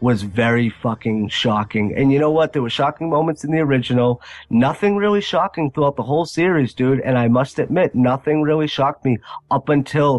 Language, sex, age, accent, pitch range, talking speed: English, male, 30-49, American, 120-150 Hz, 195 wpm